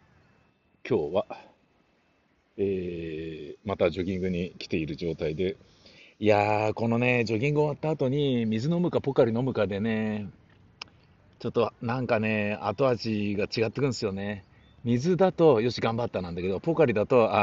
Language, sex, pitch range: Japanese, male, 95-130 Hz